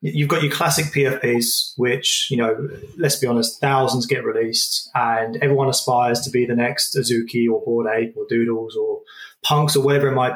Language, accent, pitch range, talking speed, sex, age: English, British, 125-145 Hz, 190 wpm, male, 20-39